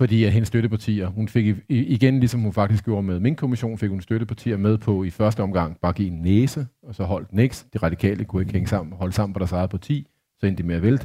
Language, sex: Danish, male